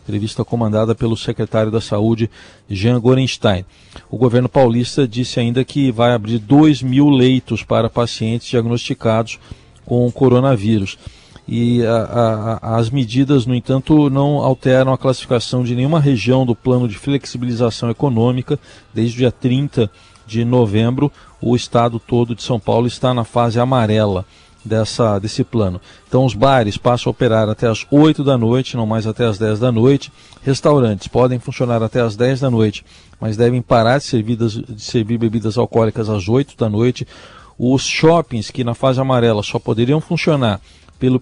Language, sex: Portuguese, male